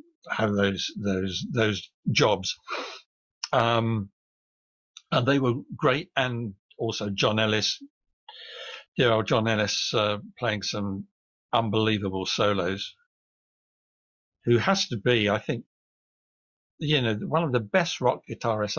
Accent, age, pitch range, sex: British, 60-79, 105-135 Hz, male